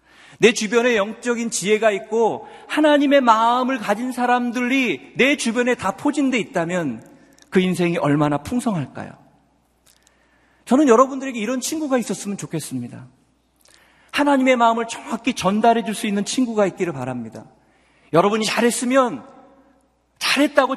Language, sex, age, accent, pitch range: Korean, male, 40-59, native, 150-245 Hz